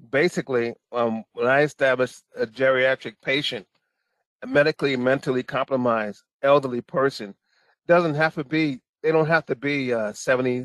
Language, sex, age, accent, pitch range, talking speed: English, male, 30-49, American, 135-165 Hz, 140 wpm